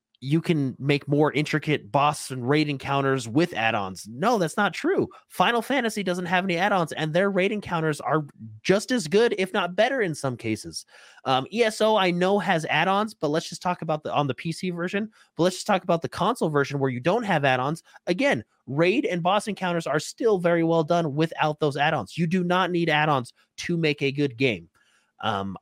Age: 30-49